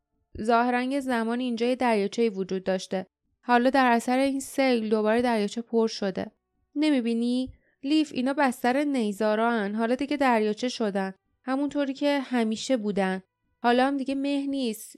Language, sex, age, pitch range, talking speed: Persian, female, 20-39, 210-270 Hz, 145 wpm